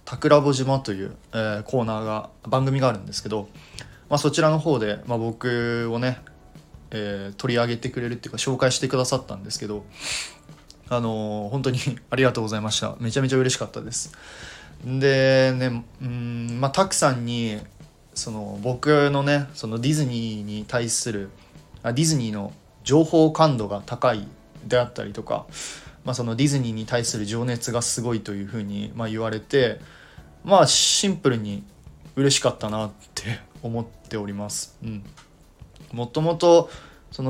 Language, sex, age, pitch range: Japanese, male, 20-39, 110-135 Hz